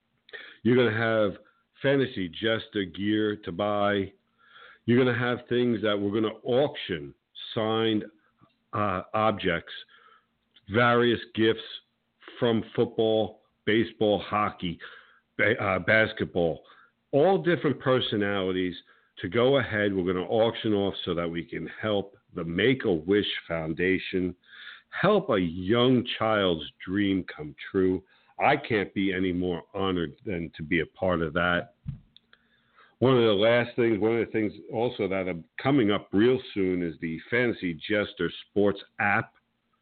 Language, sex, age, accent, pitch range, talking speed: English, male, 50-69, American, 90-115 Hz, 140 wpm